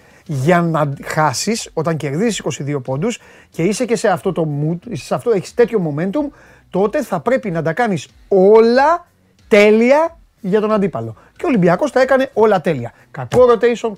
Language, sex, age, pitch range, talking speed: Greek, male, 30-49, 165-220 Hz, 155 wpm